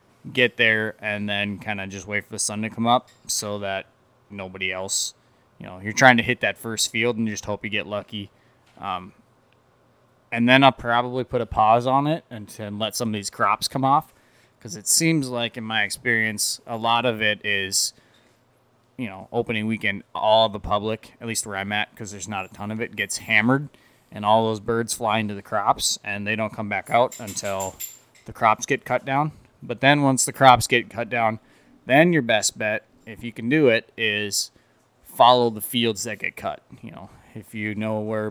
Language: English